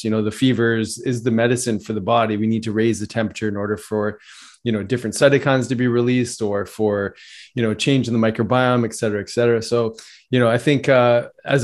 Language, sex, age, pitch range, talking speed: English, male, 20-39, 110-125 Hz, 235 wpm